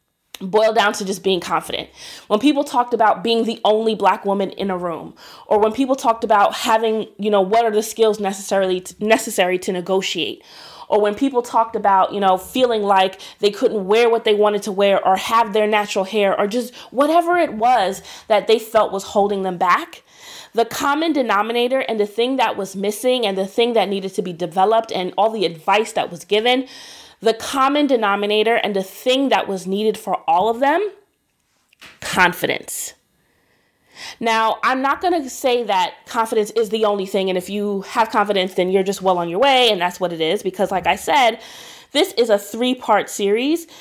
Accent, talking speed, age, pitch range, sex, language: American, 200 wpm, 30-49, 195-245 Hz, female, English